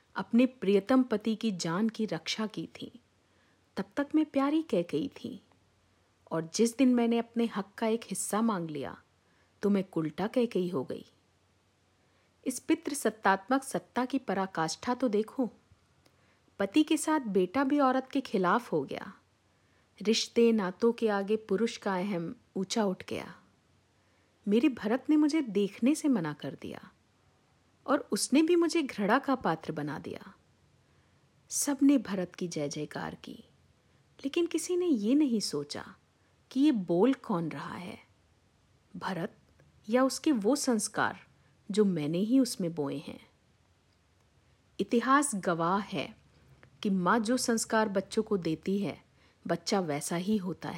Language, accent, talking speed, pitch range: Hindi, native, 145 wpm, 175-260 Hz